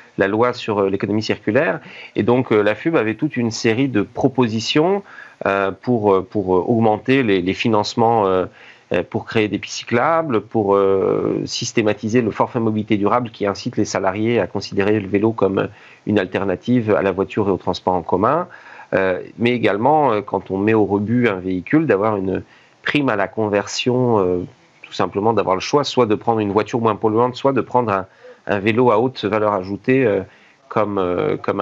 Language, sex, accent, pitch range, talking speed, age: French, male, French, 100-120 Hz, 185 wpm, 40-59